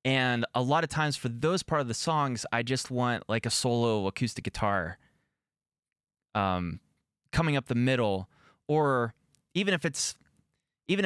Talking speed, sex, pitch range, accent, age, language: 155 wpm, male, 115-140 Hz, American, 20-39, English